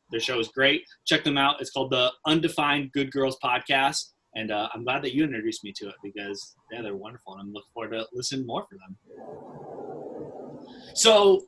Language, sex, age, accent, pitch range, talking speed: English, male, 20-39, American, 130-175 Hz, 200 wpm